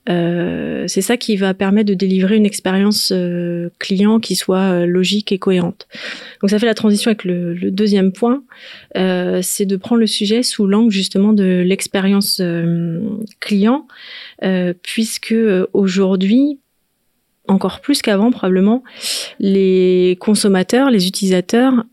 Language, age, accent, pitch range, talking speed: French, 30-49, French, 185-225 Hz, 140 wpm